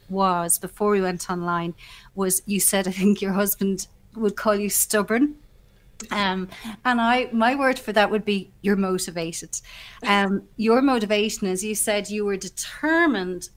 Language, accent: English, Irish